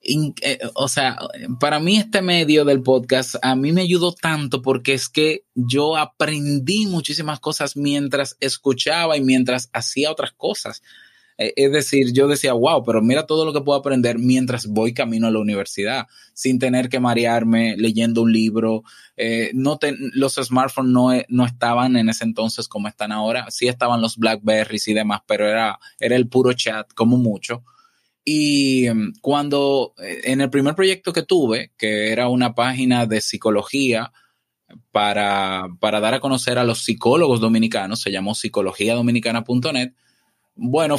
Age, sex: 20-39, male